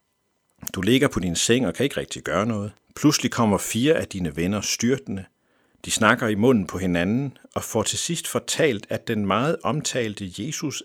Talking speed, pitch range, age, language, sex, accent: 190 wpm, 100-140 Hz, 60-79, Danish, male, native